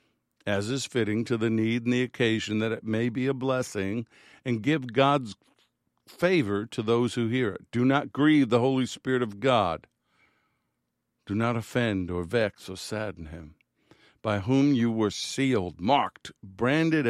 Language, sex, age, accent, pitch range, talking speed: English, male, 50-69, American, 105-135 Hz, 165 wpm